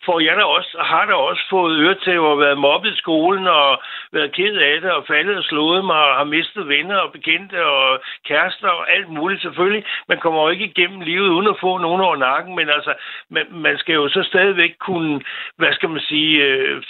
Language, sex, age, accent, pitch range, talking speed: Danish, male, 60-79, native, 140-175 Hz, 225 wpm